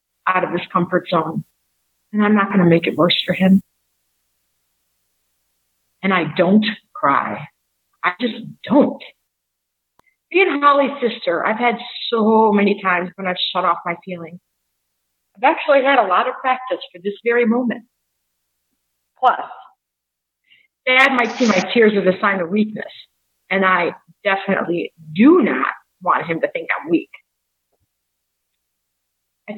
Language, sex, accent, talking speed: English, female, American, 140 wpm